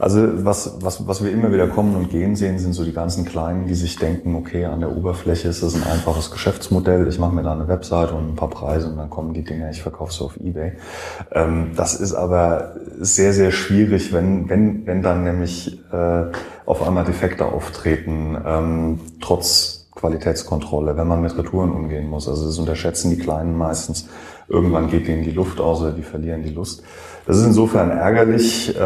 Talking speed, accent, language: 190 wpm, German, German